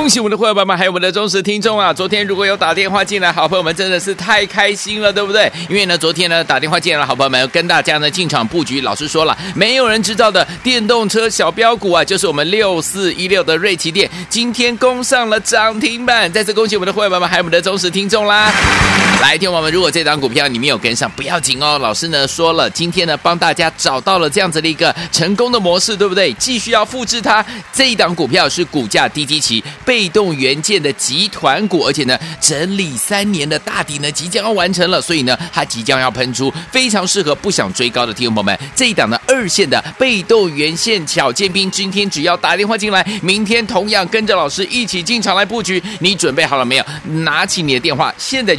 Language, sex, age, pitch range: Chinese, male, 30-49, 165-215 Hz